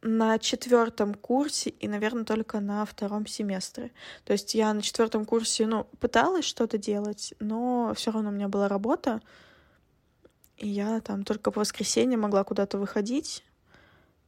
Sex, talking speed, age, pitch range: female, 145 wpm, 20-39, 205-240 Hz